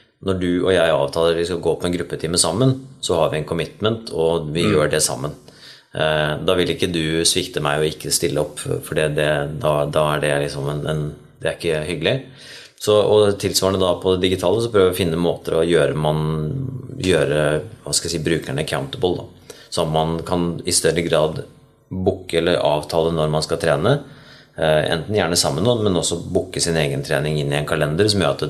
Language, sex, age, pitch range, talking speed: Swedish, male, 30-49, 75-95 Hz, 200 wpm